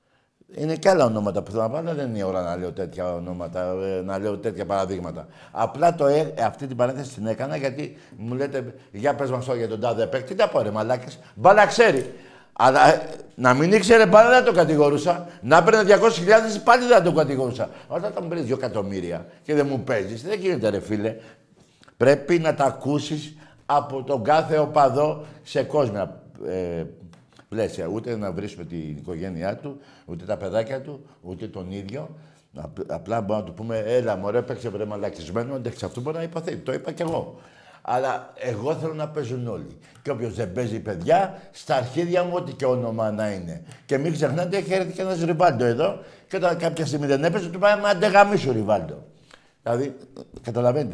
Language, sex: Greek, male